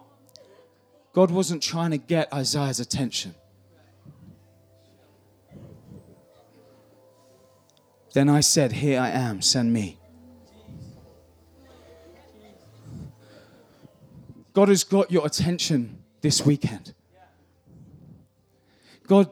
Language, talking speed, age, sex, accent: English, 70 wpm, 30-49, male, British